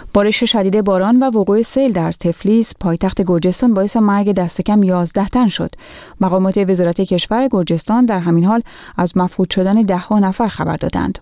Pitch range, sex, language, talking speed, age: 175-215 Hz, female, Persian, 170 wpm, 30-49